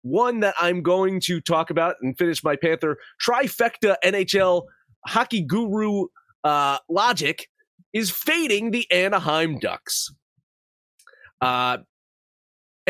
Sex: male